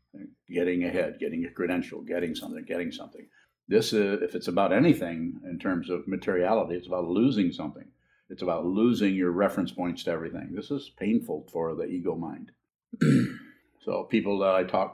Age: 50-69